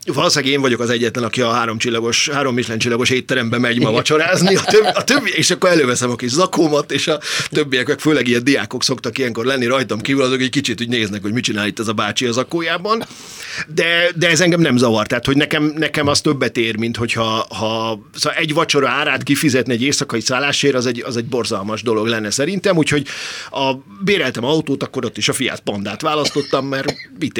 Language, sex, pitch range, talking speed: Hungarian, male, 115-145 Hz, 210 wpm